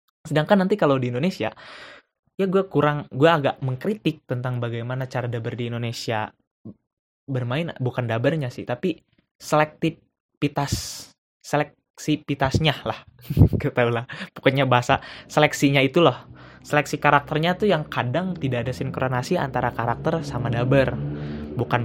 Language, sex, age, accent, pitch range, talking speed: Indonesian, male, 20-39, native, 120-150 Hz, 125 wpm